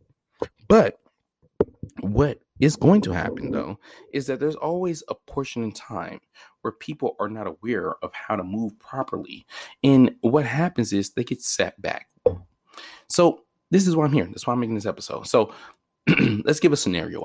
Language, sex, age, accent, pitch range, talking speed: English, male, 30-49, American, 100-150 Hz, 175 wpm